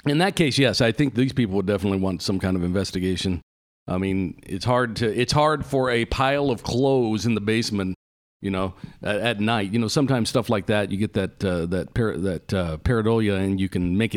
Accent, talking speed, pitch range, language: American, 230 wpm, 95-125 Hz, English